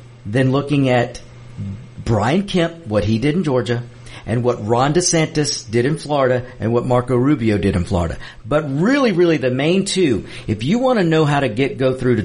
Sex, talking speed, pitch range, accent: male, 200 wpm, 115-150 Hz, American